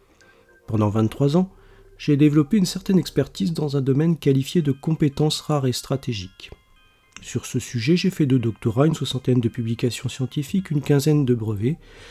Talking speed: 165 wpm